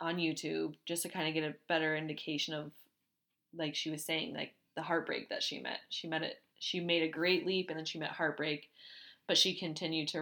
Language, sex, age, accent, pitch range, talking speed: English, female, 20-39, American, 155-170 Hz, 225 wpm